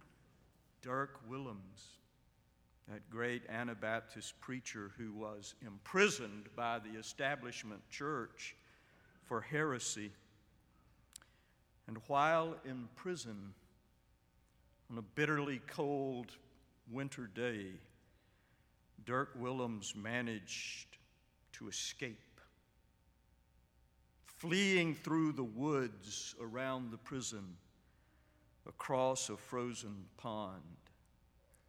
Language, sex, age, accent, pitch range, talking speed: English, male, 60-79, American, 90-130 Hz, 80 wpm